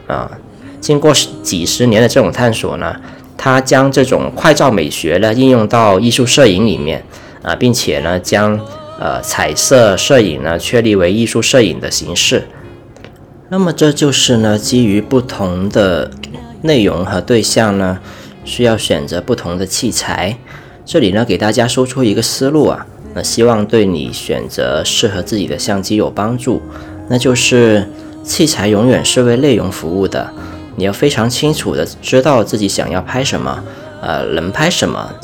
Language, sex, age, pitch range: Chinese, male, 20-39, 100-130 Hz